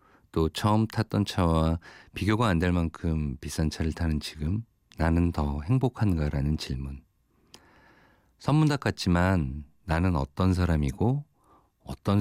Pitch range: 80-110 Hz